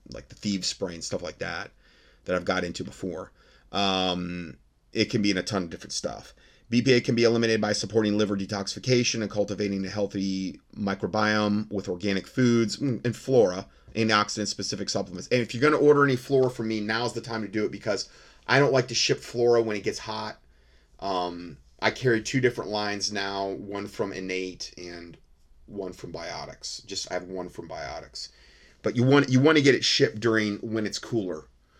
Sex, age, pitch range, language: male, 30-49, 95-115 Hz, English